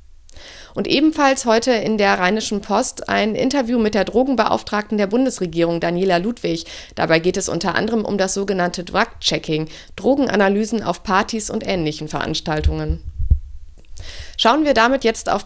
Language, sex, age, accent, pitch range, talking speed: German, female, 50-69, German, 175-235 Hz, 140 wpm